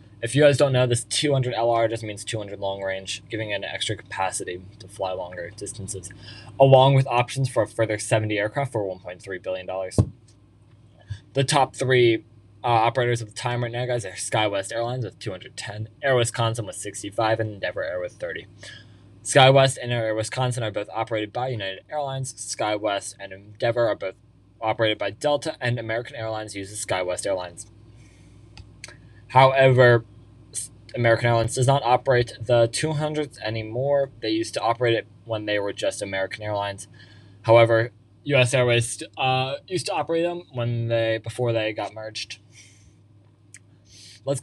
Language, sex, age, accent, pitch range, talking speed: English, male, 20-39, American, 105-125 Hz, 160 wpm